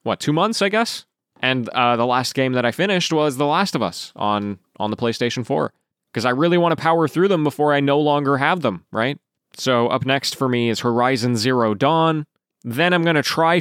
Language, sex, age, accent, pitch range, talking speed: English, male, 20-39, American, 115-155 Hz, 230 wpm